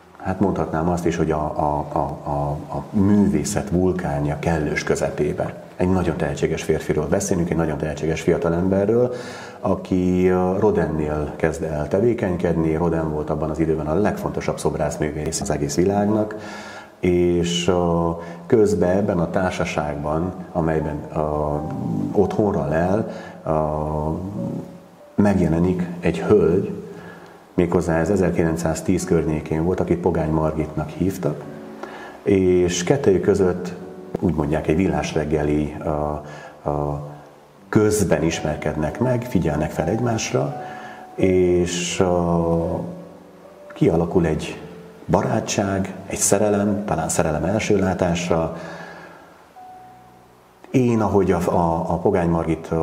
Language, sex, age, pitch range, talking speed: Hungarian, male, 30-49, 75-95 Hz, 100 wpm